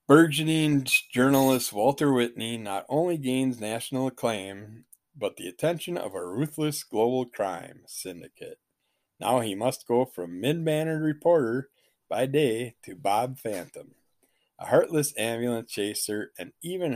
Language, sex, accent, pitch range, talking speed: English, male, American, 105-150 Hz, 125 wpm